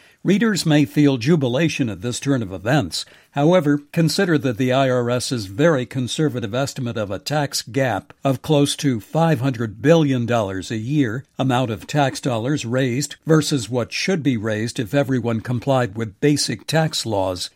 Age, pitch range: 60-79, 120-155 Hz